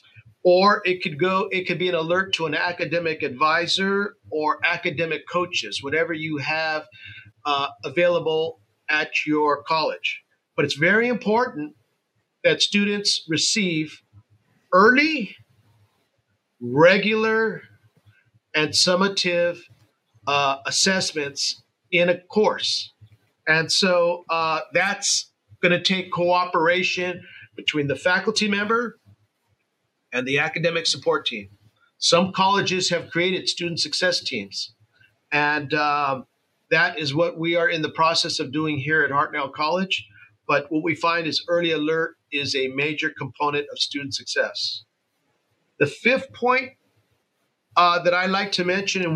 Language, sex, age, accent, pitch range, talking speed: English, male, 50-69, American, 145-185 Hz, 125 wpm